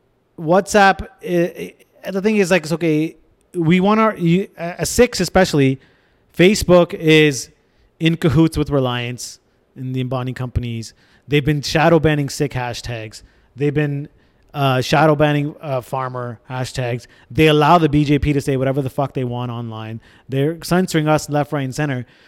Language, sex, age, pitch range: English, male, 30-49, 125-160 Hz